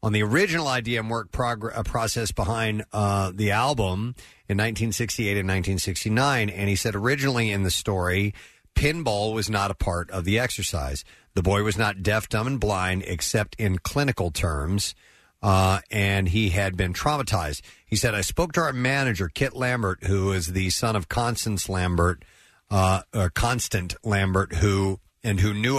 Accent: American